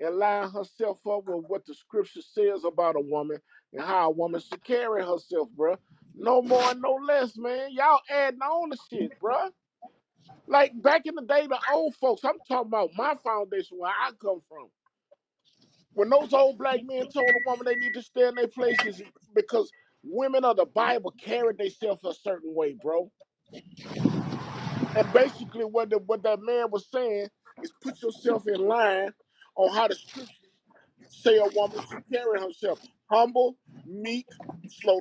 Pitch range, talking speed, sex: 205-265 Hz, 170 wpm, male